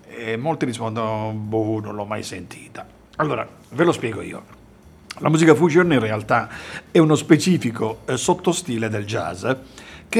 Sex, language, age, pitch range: male, Italian, 50-69, 115-155 Hz